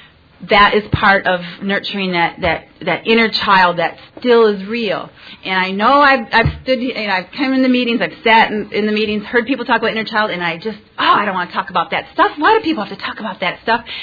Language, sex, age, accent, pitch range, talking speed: English, female, 40-59, American, 185-250 Hz, 250 wpm